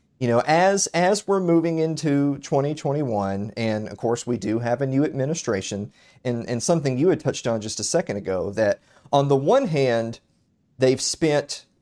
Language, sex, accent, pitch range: English, male, American, 110-135 Hz